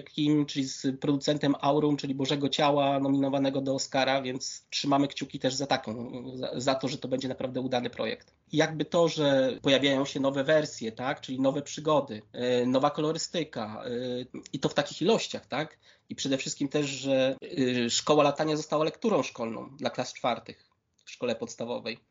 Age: 20-39